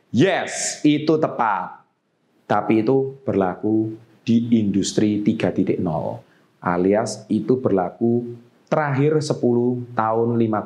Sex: male